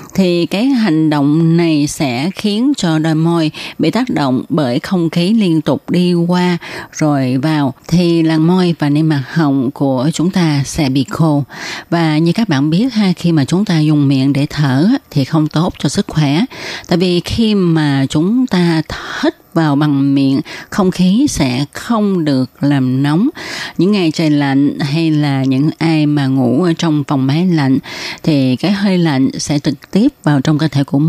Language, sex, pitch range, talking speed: Vietnamese, female, 145-185 Hz, 190 wpm